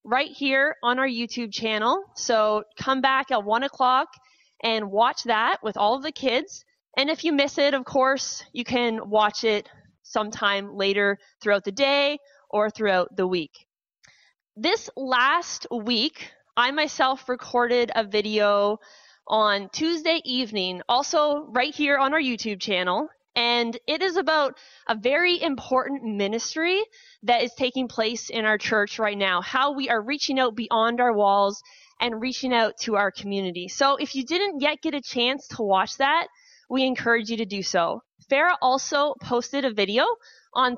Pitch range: 215-280 Hz